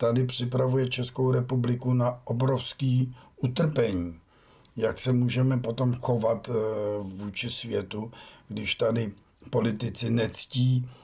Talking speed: 100 wpm